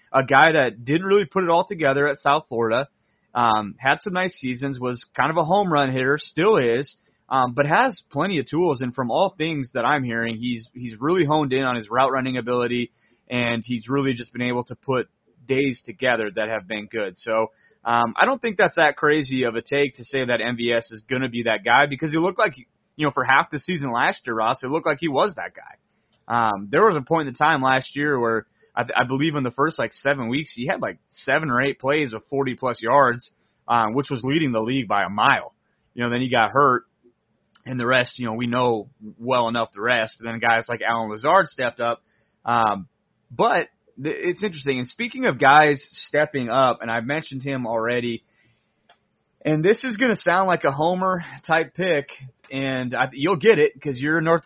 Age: 30-49